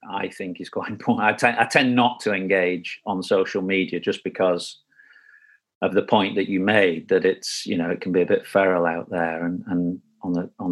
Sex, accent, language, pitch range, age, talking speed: male, British, English, 95-130 Hz, 40-59, 225 wpm